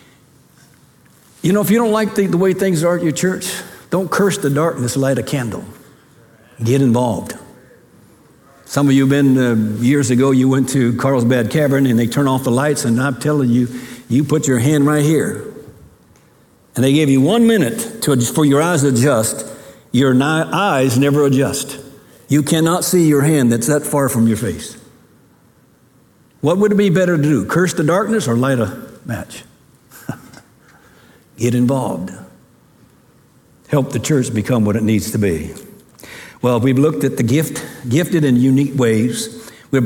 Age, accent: 60-79, American